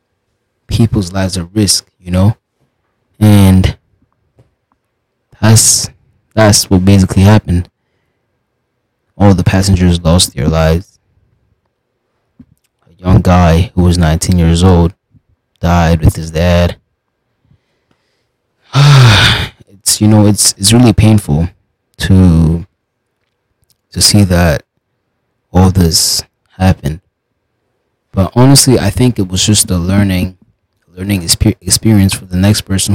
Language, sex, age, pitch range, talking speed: English, male, 20-39, 90-115 Hz, 105 wpm